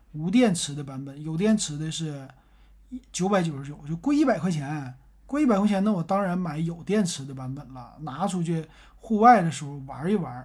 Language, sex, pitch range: Chinese, male, 140-195 Hz